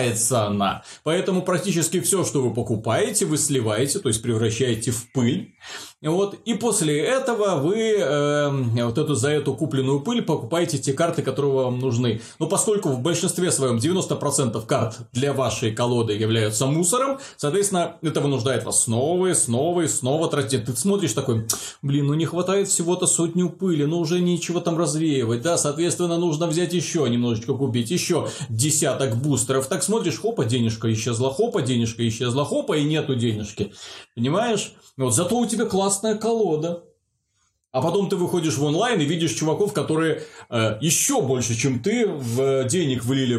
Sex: male